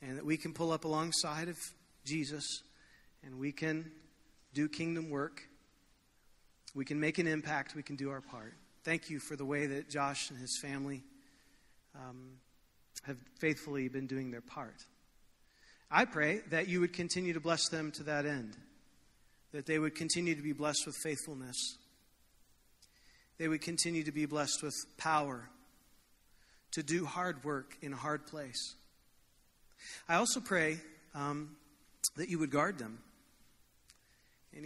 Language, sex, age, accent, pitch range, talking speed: English, male, 40-59, American, 140-165 Hz, 155 wpm